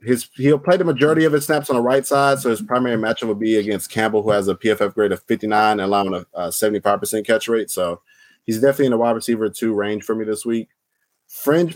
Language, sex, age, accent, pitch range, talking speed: English, male, 20-39, American, 95-120 Hz, 240 wpm